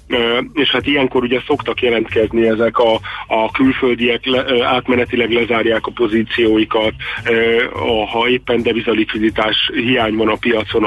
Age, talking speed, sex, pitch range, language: 40-59, 115 wpm, male, 110-125 Hz, Hungarian